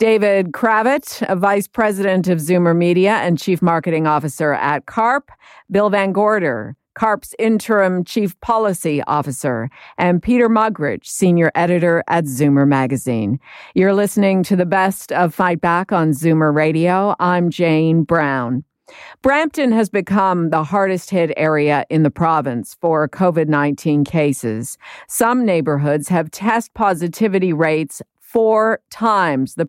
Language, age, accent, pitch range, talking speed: English, 50-69, American, 155-205 Hz, 125 wpm